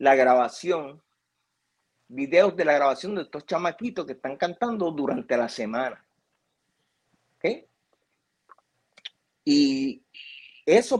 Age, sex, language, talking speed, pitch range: 30-49, male, Spanish, 100 wpm, 120-170 Hz